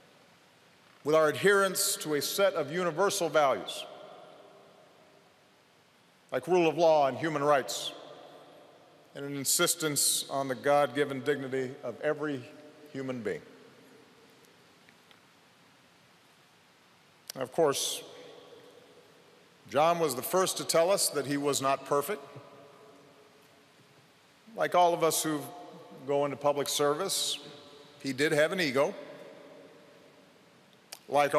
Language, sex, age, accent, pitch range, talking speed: English, male, 50-69, American, 140-160 Hz, 105 wpm